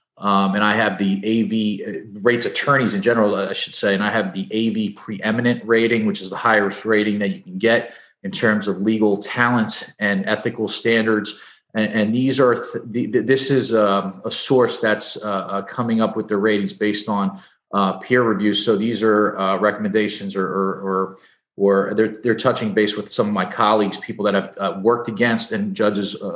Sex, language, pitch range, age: male, English, 100-110 Hz, 40-59